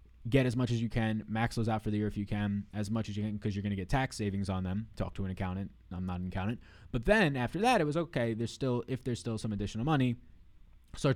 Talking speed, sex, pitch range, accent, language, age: 285 wpm, male, 100-120 Hz, American, English, 20-39